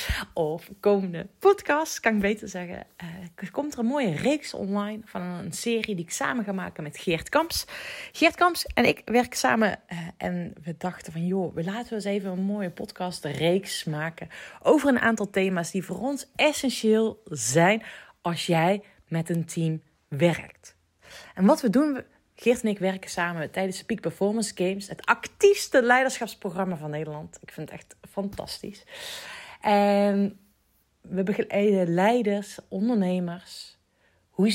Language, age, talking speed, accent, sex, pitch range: Dutch, 30-49, 160 wpm, Dutch, female, 170-220 Hz